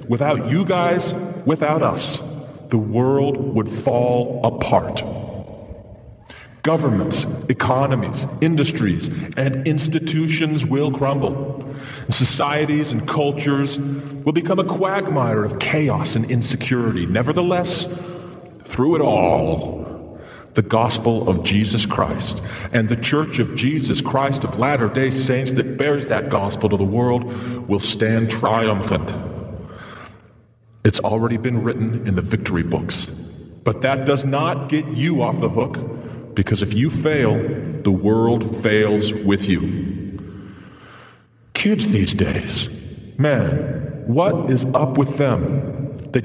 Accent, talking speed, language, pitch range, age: American, 120 wpm, English, 110-150 Hz, 40-59